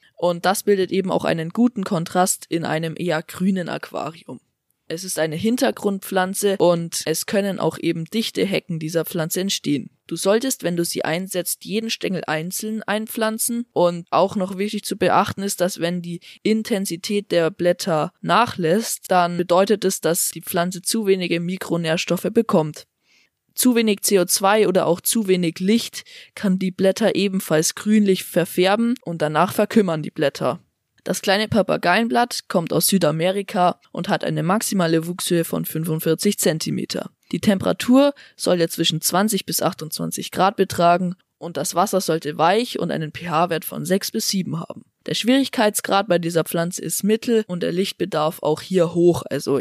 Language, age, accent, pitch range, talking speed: German, 20-39, German, 165-205 Hz, 160 wpm